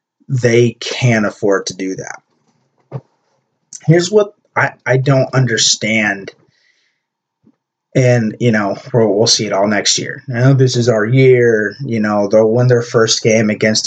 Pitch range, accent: 110-150 Hz, American